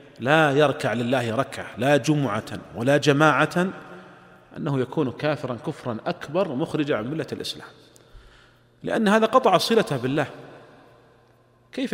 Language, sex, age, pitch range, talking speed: Arabic, male, 40-59, 125-160 Hz, 115 wpm